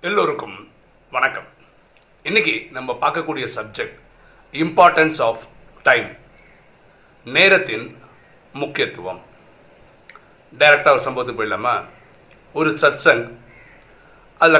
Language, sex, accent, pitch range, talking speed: Tamil, male, native, 130-190 Hz, 75 wpm